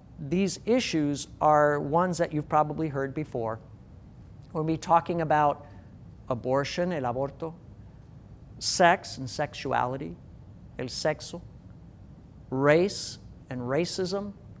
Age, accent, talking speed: 50-69, American, 100 wpm